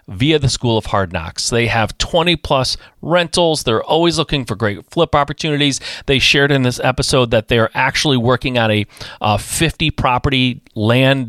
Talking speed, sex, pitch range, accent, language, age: 170 wpm, male, 105-135 Hz, American, English, 30-49